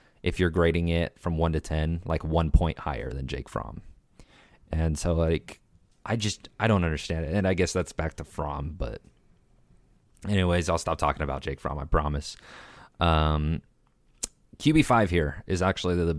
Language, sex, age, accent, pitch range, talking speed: English, male, 30-49, American, 75-90 Hz, 180 wpm